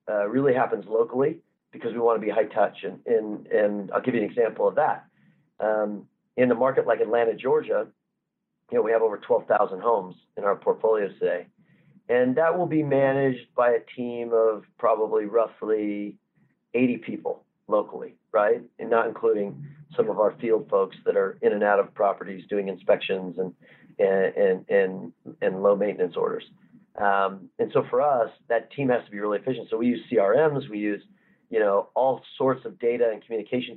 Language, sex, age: English, male, 40-59